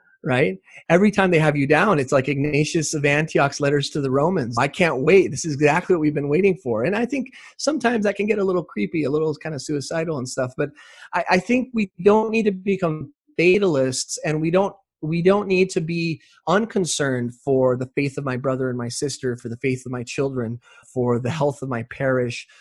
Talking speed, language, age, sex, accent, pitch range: 225 wpm, English, 30-49, male, American, 135-180 Hz